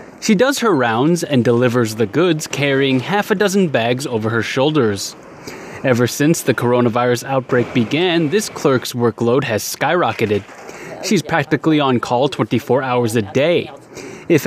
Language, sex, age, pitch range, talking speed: English, male, 20-39, 125-165 Hz, 150 wpm